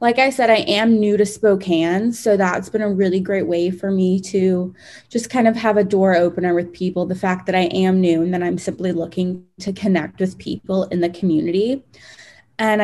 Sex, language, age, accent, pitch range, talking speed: female, English, 20-39, American, 180-210 Hz, 215 wpm